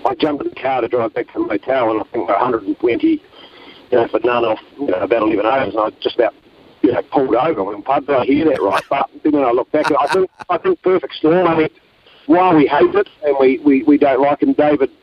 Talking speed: 270 wpm